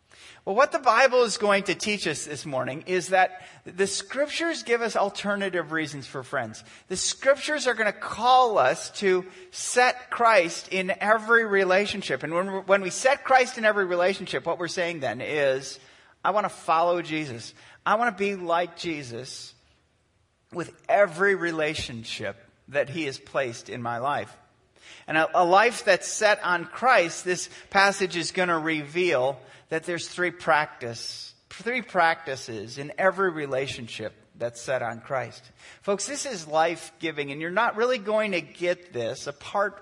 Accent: American